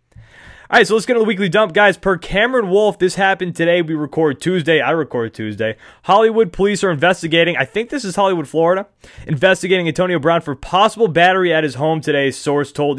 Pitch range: 135-190 Hz